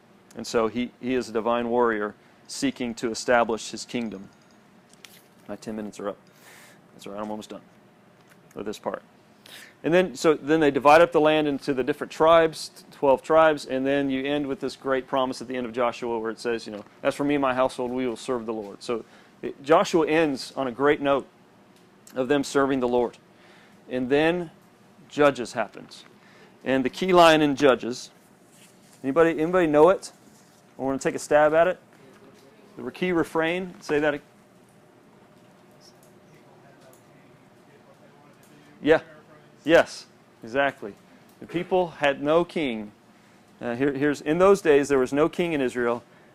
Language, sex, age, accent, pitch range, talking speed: English, male, 40-59, American, 125-175 Hz, 170 wpm